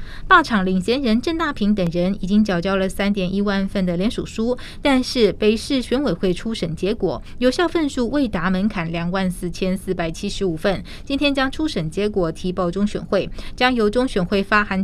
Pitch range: 185-235 Hz